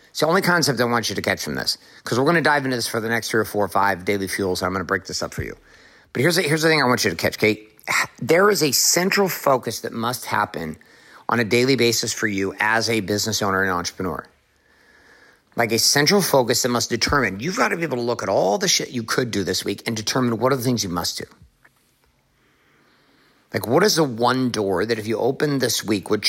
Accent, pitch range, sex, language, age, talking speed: American, 110-140 Hz, male, English, 50-69, 260 wpm